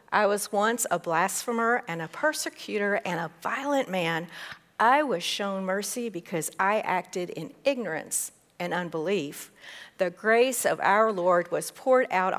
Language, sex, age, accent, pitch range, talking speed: English, female, 50-69, American, 165-225 Hz, 150 wpm